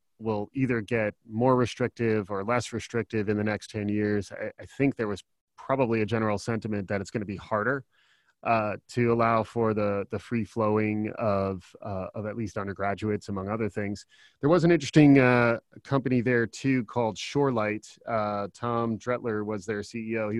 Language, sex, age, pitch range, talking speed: English, male, 30-49, 105-120 Hz, 180 wpm